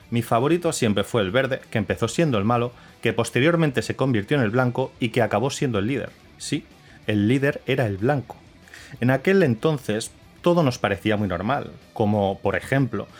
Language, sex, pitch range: Spanish, male, 105-145 Hz